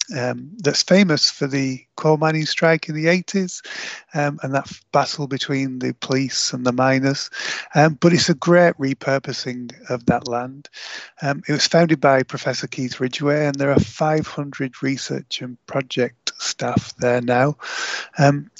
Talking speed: 160 wpm